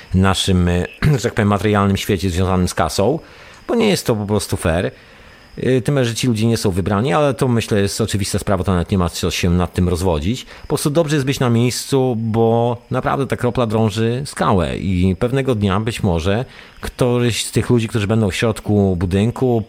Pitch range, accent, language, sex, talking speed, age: 95-120 Hz, native, Polish, male, 200 wpm, 40-59